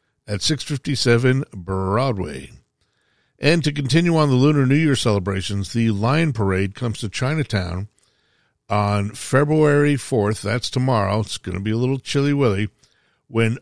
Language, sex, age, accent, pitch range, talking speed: English, male, 50-69, American, 105-140 Hz, 140 wpm